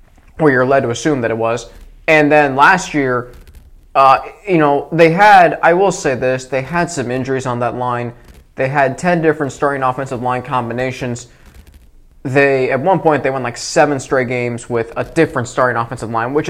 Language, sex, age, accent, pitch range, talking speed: English, male, 20-39, American, 120-160 Hz, 195 wpm